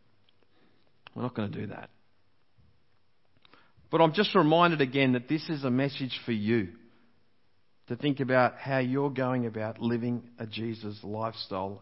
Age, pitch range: 40-59, 115-150 Hz